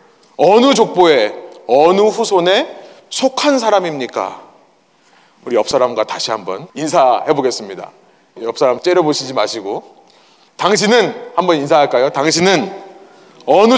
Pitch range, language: 170-265 Hz, Korean